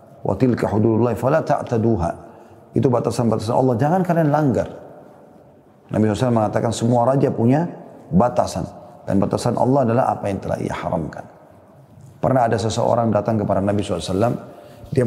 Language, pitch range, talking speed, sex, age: Indonesian, 110-140 Hz, 140 wpm, male, 30-49